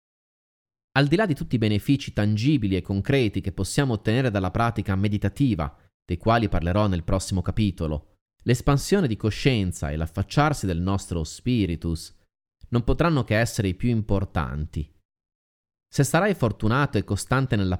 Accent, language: native, Italian